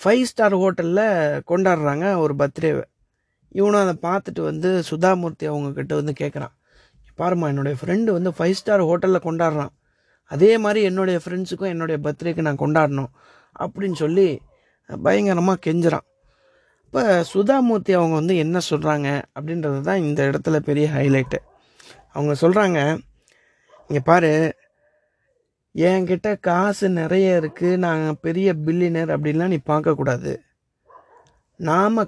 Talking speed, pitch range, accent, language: 115 wpm, 155-195 Hz, native, Tamil